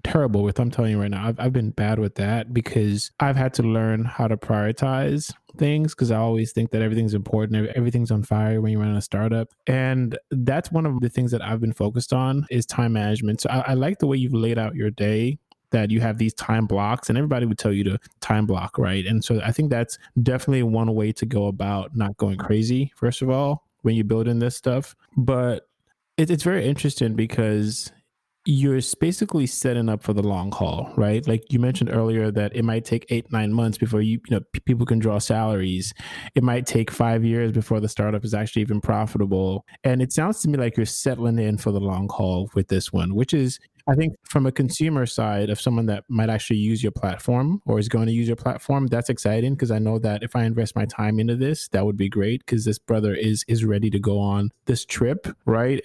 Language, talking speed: English, 230 wpm